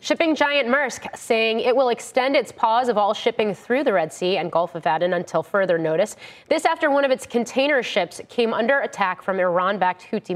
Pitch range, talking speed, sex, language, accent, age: 185-250 Hz, 210 wpm, female, English, American, 30-49